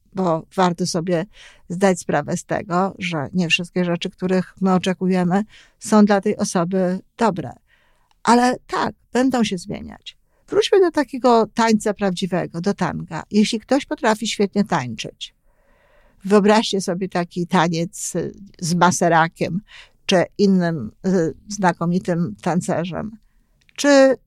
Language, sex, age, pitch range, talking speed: Polish, female, 50-69, 180-230 Hz, 115 wpm